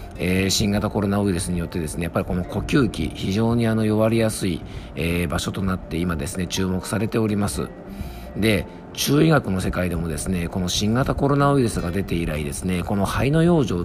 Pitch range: 85-110 Hz